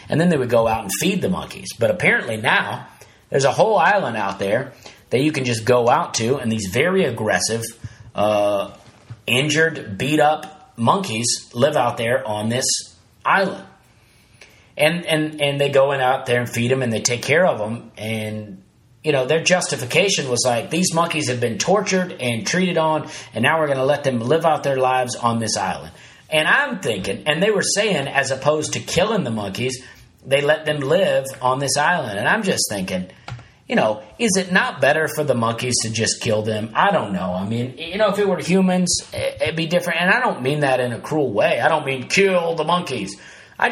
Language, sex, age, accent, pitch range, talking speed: English, male, 40-59, American, 115-150 Hz, 210 wpm